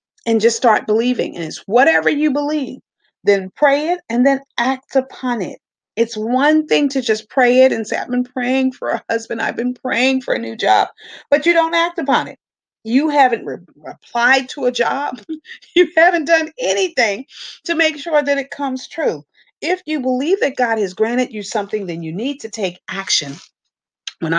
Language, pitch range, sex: English, 195-285 Hz, female